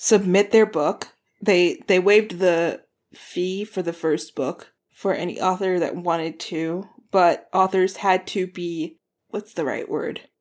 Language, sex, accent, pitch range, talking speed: English, female, American, 170-200 Hz, 155 wpm